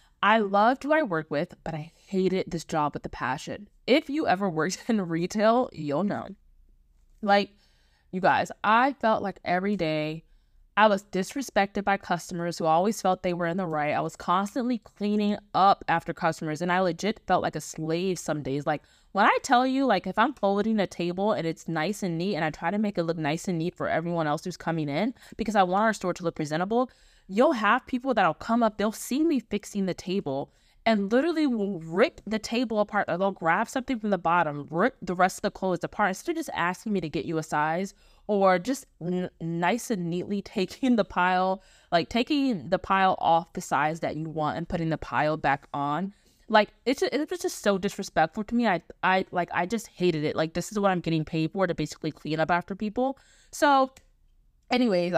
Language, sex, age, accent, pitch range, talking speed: English, female, 20-39, American, 165-215 Hz, 215 wpm